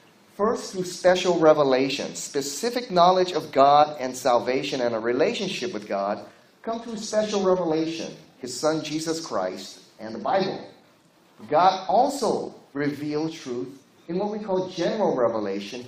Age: 30-49